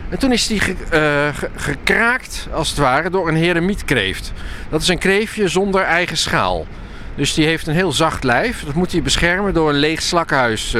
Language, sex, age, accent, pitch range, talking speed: Dutch, male, 50-69, Dutch, 115-170 Hz, 185 wpm